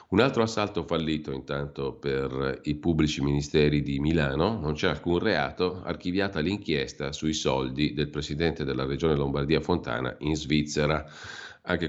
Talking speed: 140 wpm